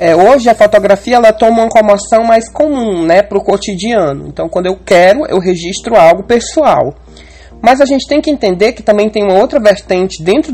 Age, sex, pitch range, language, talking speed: 20-39, male, 180-250 Hz, Portuguese, 195 wpm